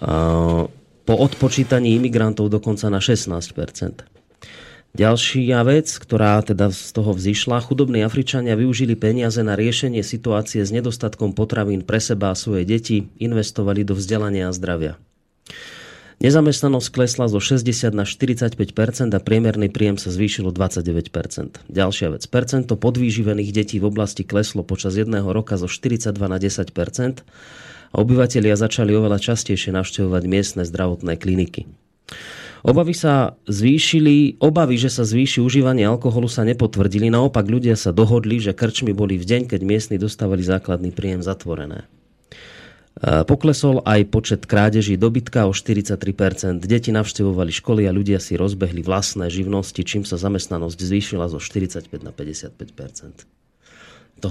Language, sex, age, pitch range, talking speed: Slovak, male, 30-49, 95-120 Hz, 135 wpm